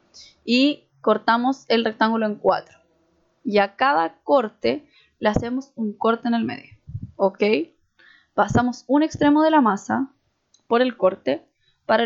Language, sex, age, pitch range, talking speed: Spanish, female, 10-29, 200-240 Hz, 140 wpm